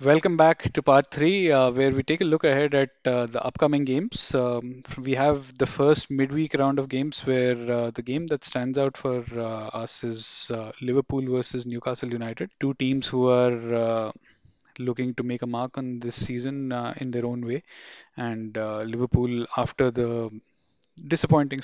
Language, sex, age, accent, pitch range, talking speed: English, male, 10-29, Indian, 120-135 Hz, 180 wpm